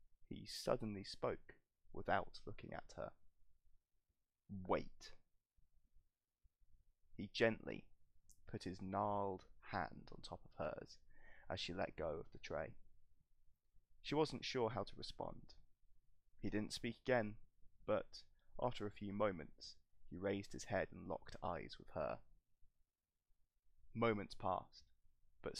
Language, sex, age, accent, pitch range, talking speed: English, male, 20-39, British, 85-105 Hz, 120 wpm